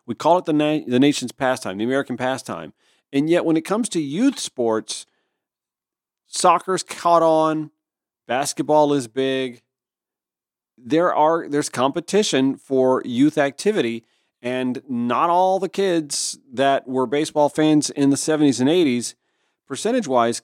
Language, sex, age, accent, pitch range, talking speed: English, male, 40-59, American, 130-175 Hz, 140 wpm